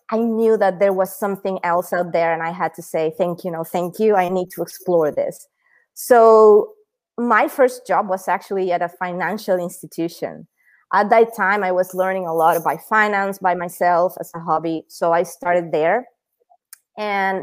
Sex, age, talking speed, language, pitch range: female, 20-39, 185 wpm, English, 175-210 Hz